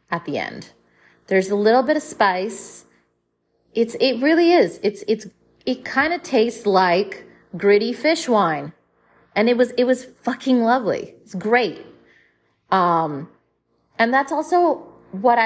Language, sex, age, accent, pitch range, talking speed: English, female, 30-49, American, 165-225 Hz, 145 wpm